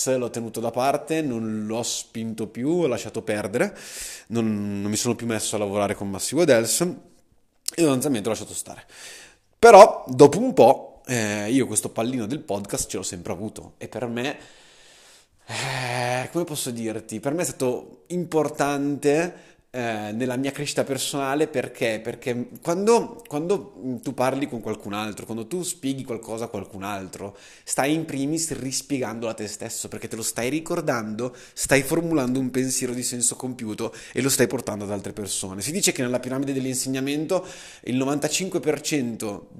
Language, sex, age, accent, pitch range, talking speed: Italian, male, 20-39, native, 110-140 Hz, 160 wpm